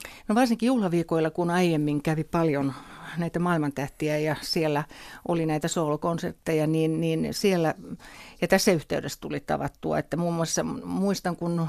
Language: Finnish